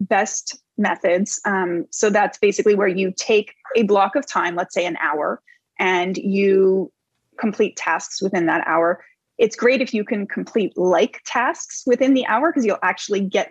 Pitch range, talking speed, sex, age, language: 205-285 Hz, 175 wpm, female, 20-39, English